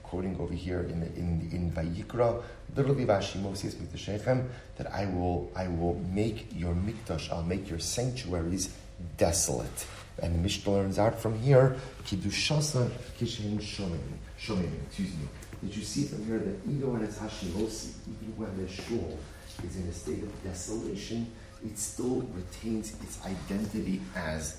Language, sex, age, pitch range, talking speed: English, male, 40-59, 90-110 Hz, 150 wpm